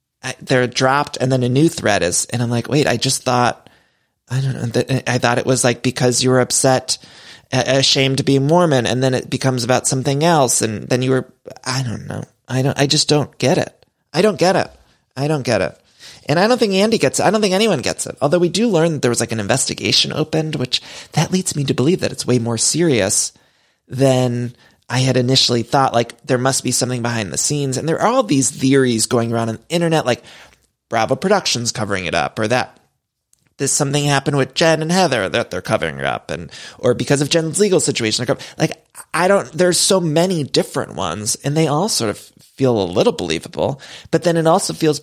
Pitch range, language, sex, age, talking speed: 120-155 Hz, English, male, 30-49, 225 wpm